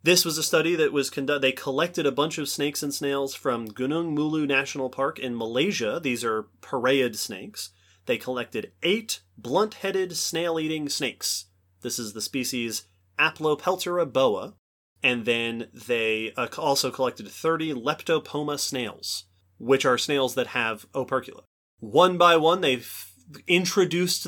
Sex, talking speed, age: male, 140 wpm, 30-49